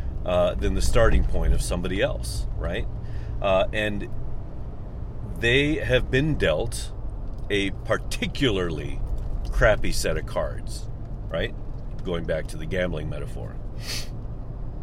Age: 40-59